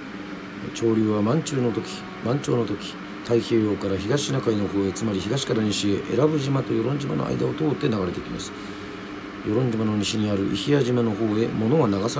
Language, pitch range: Japanese, 100-120 Hz